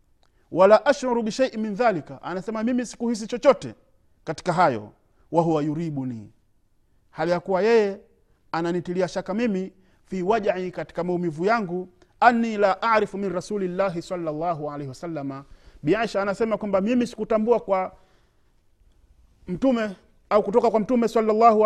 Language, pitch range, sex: Swahili, 145-210 Hz, male